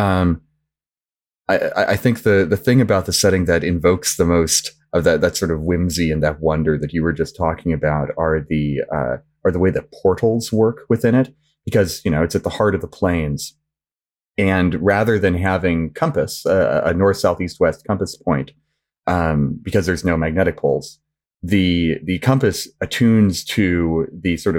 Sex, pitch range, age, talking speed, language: male, 80-100 Hz, 30-49, 185 wpm, English